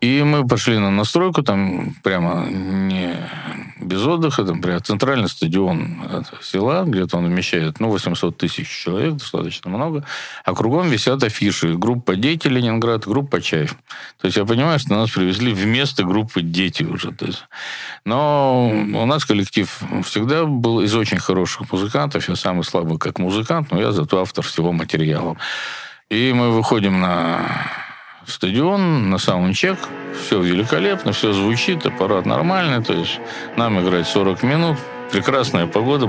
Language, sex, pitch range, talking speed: Russian, male, 90-120 Hz, 150 wpm